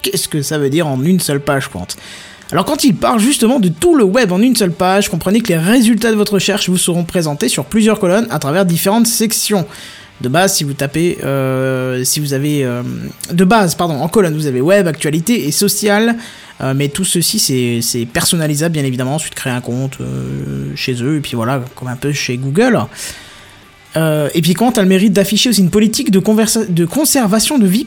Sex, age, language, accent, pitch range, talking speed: male, 20-39, French, French, 135-205 Hz, 215 wpm